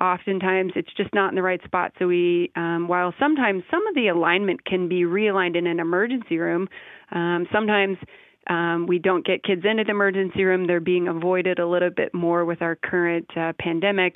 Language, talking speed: English, 200 wpm